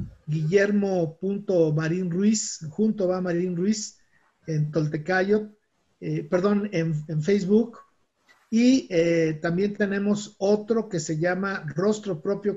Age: 40-59